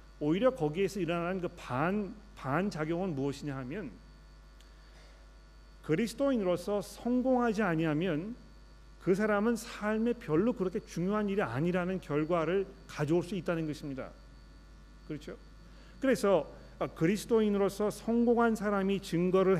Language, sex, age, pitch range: Korean, male, 40-59, 145-190 Hz